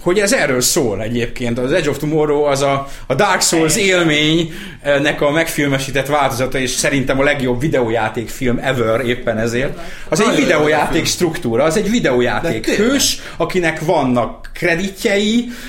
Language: Hungarian